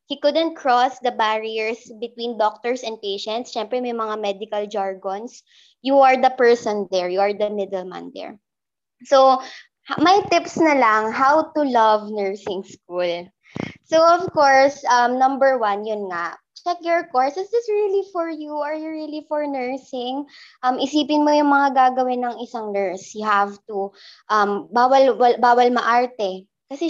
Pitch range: 220-285 Hz